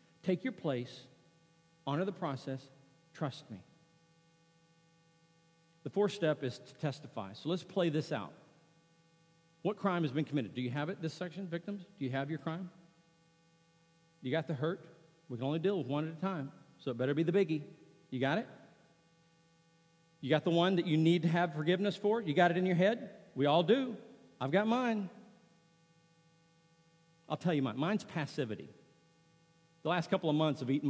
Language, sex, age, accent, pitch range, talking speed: English, male, 50-69, American, 145-165 Hz, 185 wpm